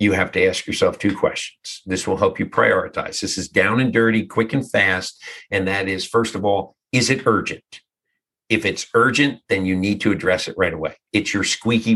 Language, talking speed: English, 215 wpm